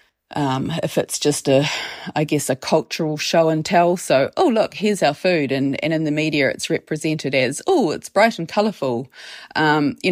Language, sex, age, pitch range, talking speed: English, female, 30-49, 150-180 Hz, 195 wpm